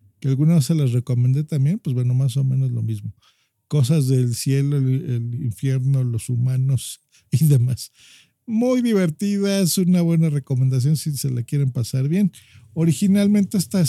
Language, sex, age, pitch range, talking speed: Spanish, male, 50-69, 125-170 Hz, 160 wpm